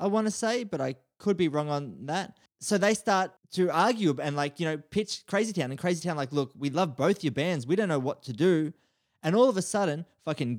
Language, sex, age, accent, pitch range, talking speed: English, male, 20-39, Australian, 140-190 Hz, 255 wpm